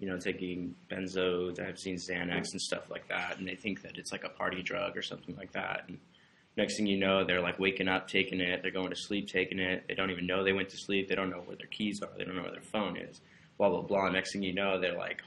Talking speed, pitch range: 285 wpm, 90-100 Hz